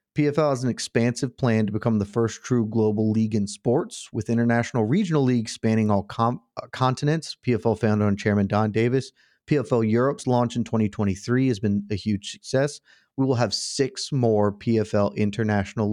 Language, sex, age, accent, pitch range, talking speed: English, male, 30-49, American, 105-130 Hz, 165 wpm